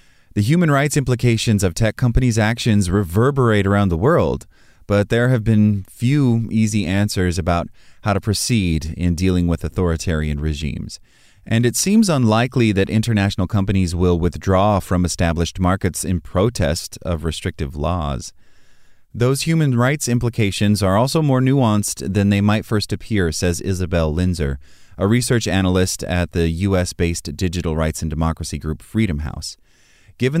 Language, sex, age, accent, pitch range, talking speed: English, male, 30-49, American, 85-110 Hz, 150 wpm